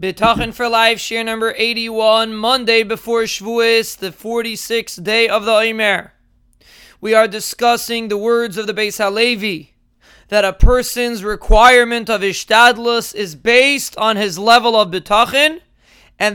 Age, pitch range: 20-39, 200-235 Hz